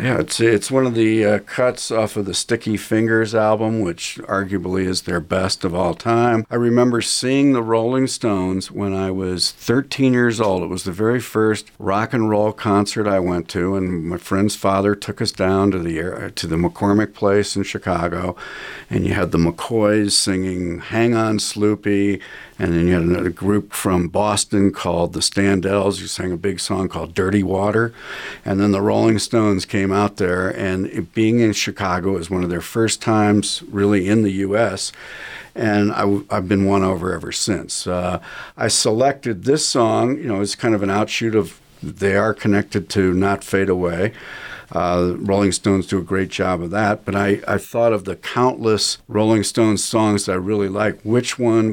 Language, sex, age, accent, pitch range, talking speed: English, male, 50-69, American, 95-110 Hz, 195 wpm